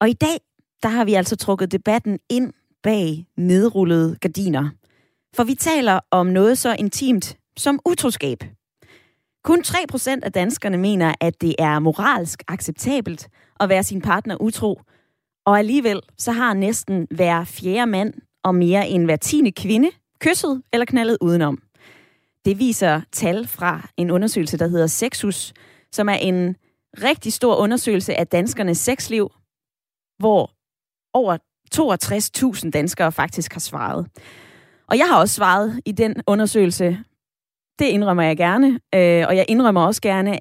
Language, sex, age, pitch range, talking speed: Danish, female, 20-39, 170-225 Hz, 145 wpm